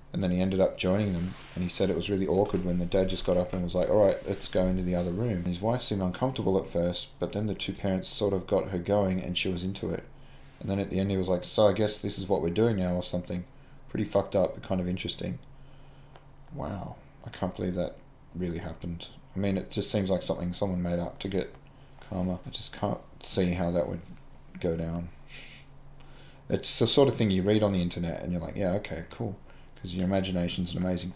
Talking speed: 245 wpm